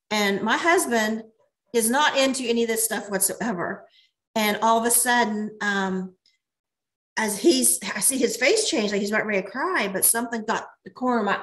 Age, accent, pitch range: 40-59, American, 215-270 Hz